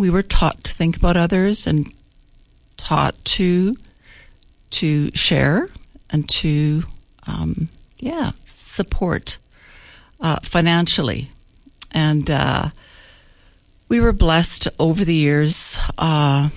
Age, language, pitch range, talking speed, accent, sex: 60-79, English, 140-165 Hz, 100 wpm, American, female